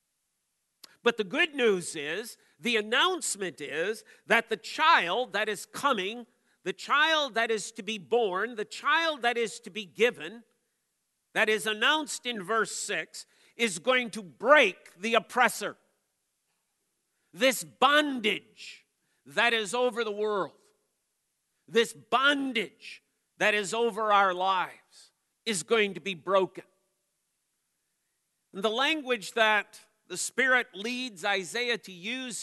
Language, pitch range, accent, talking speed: English, 190-235 Hz, American, 130 wpm